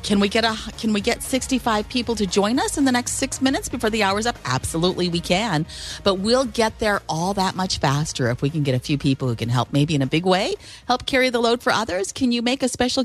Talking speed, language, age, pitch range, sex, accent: 265 wpm, English, 40-59, 150-245 Hz, female, American